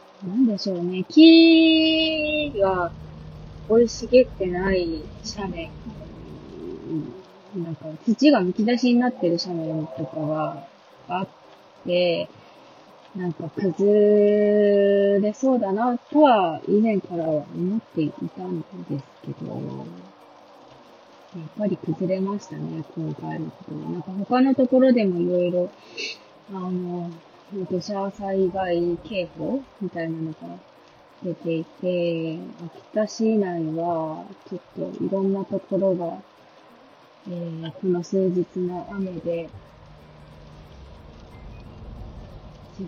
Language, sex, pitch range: Japanese, female, 165-205 Hz